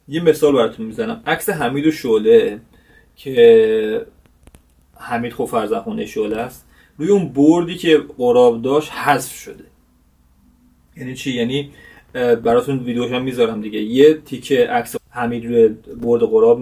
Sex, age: male, 30-49